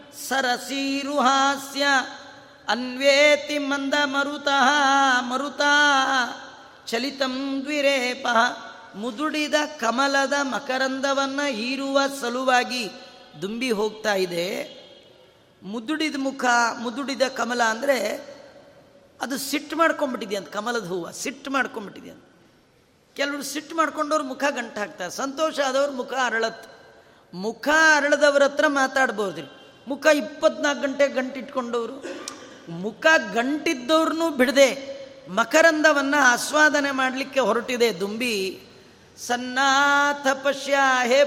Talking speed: 80 wpm